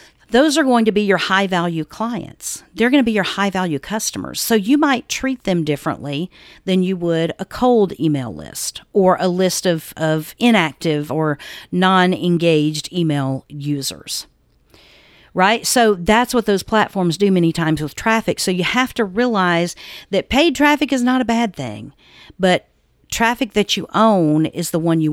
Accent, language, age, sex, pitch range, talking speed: American, English, 50-69, female, 155-205 Hz, 175 wpm